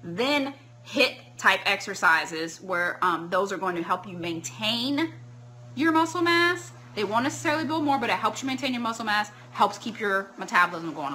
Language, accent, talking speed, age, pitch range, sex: English, American, 185 wpm, 20-39, 145-205 Hz, female